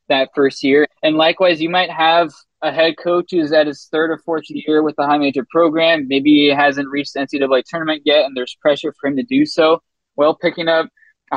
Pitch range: 140-165 Hz